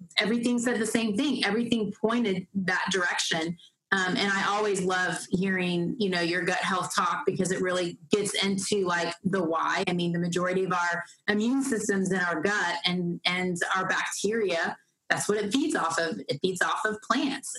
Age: 30-49